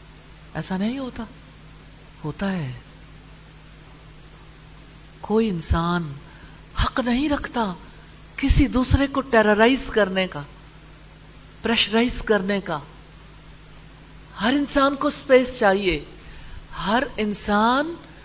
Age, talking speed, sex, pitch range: 50-69, 85 wpm, female, 165-240 Hz